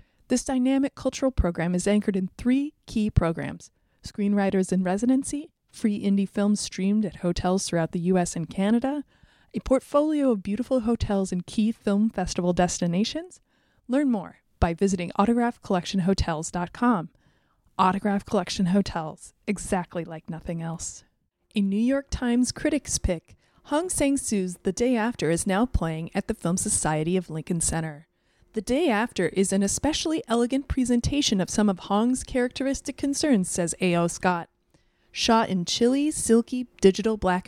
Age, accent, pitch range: 30-49, American, 180-245 Hz